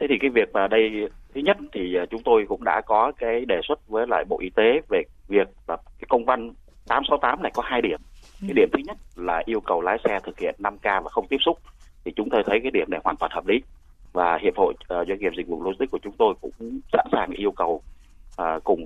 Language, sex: Vietnamese, male